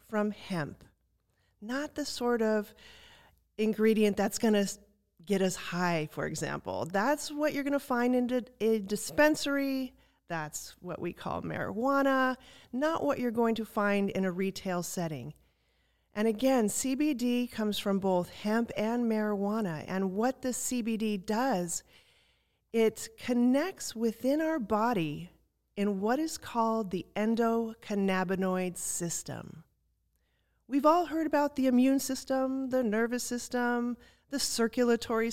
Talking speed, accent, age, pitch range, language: 130 wpm, American, 40-59, 195-260 Hz, English